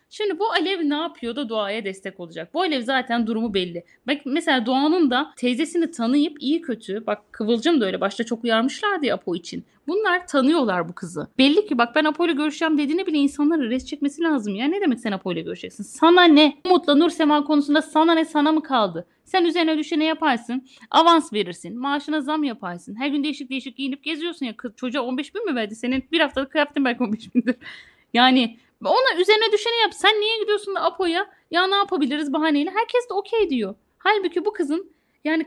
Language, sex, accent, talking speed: Turkish, female, native, 195 wpm